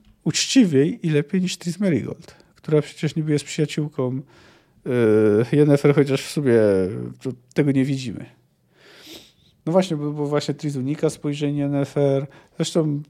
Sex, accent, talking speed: male, native, 135 wpm